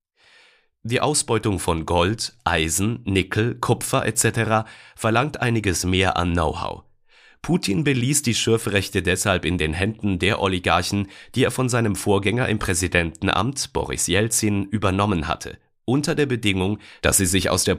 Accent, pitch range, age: German, 90-120 Hz, 40-59